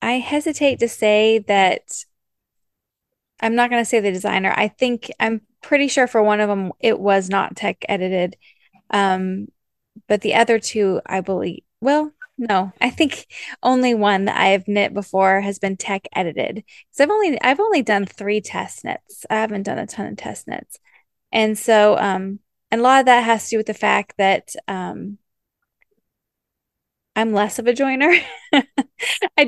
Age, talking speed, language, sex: 20-39, 175 wpm, English, female